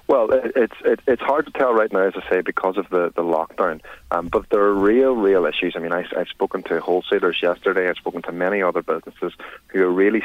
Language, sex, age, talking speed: English, male, 30-49, 235 wpm